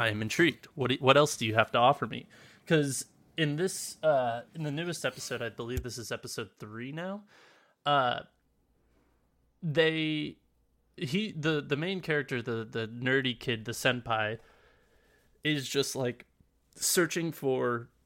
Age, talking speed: 20-39, 150 wpm